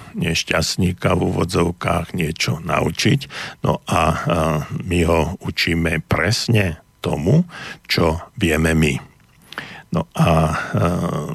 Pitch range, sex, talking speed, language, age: 80-90 Hz, male, 90 wpm, Slovak, 50-69